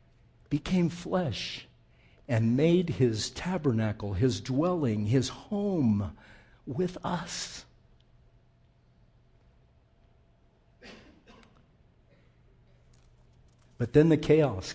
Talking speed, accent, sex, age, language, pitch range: 65 wpm, American, male, 60-79, English, 110-150 Hz